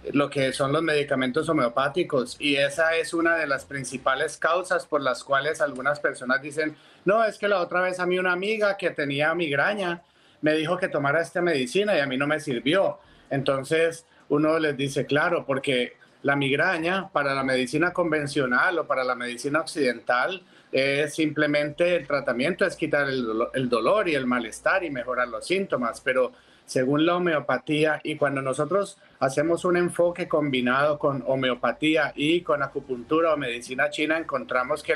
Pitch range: 140-170 Hz